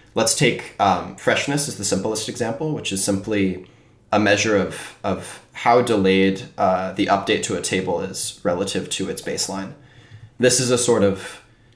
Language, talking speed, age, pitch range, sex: English, 175 wpm, 20-39, 95-115 Hz, male